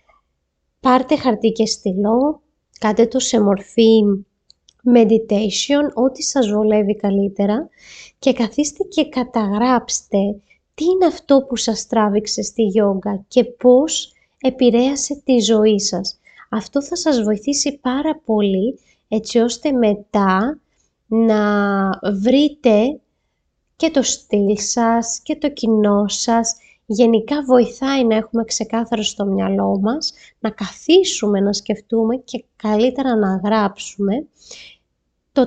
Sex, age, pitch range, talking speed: female, 20-39, 210-260 Hz, 115 wpm